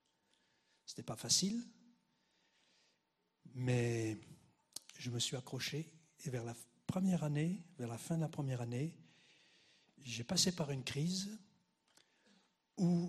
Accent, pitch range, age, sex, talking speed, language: French, 130-180 Hz, 60-79, male, 120 wpm, French